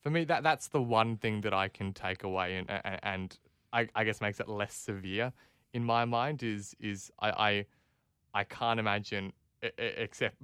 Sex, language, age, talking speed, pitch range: male, English, 20-39, 185 wpm, 95-120 Hz